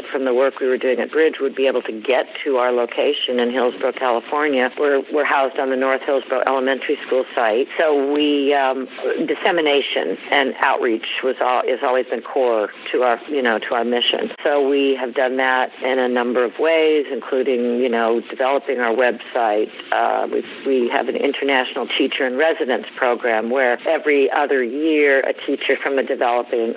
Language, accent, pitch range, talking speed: English, American, 125-145 Hz, 190 wpm